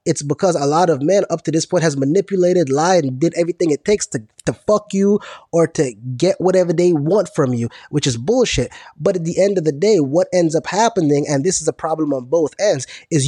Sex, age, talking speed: male, 20-39, 240 wpm